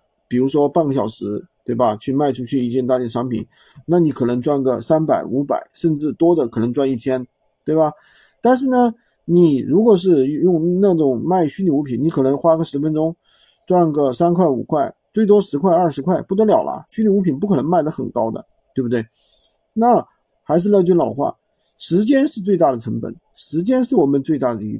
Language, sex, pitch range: Chinese, male, 135-190 Hz